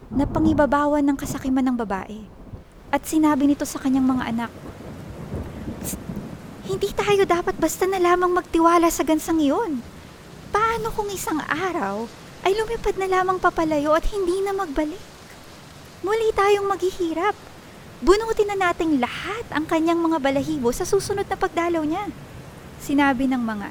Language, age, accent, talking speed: Filipino, 20-39, native, 140 wpm